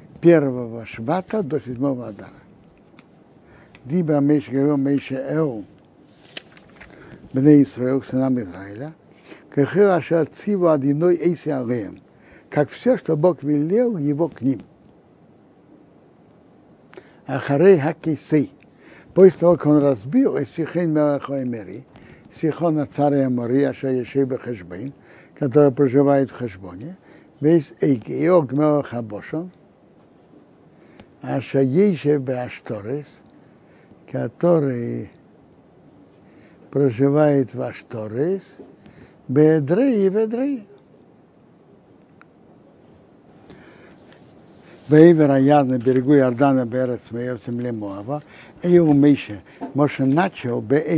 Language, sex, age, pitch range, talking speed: Russian, male, 60-79, 130-160 Hz, 90 wpm